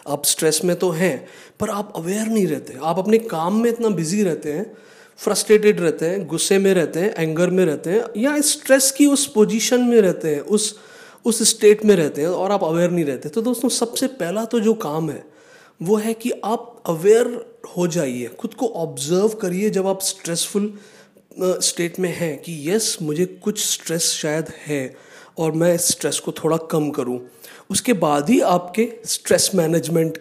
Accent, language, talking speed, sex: native, Hindi, 185 wpm, male